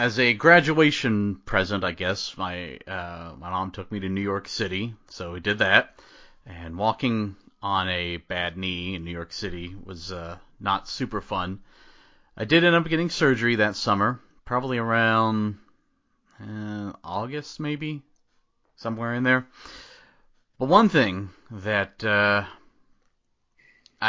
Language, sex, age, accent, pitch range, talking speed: English, male, 30-49, American, 95-135 Hz, 140 wpm